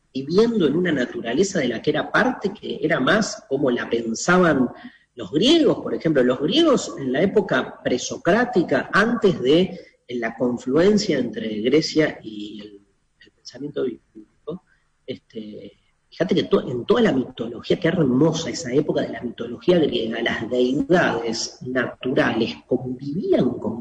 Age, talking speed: 40-59, 145 wpm